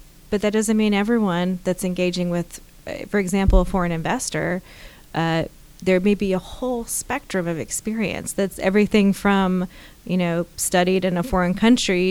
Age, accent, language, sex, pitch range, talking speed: 20-39, American, English, female, 175-205 Hz, 160 wpm